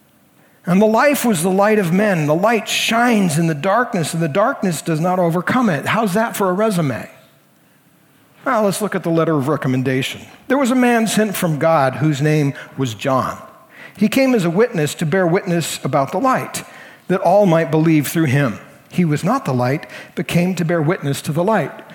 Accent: American